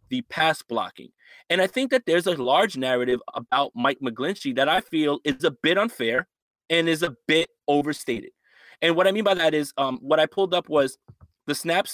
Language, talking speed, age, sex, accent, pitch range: English, 205 wpm, 30-49, male, American, 140-190 Hz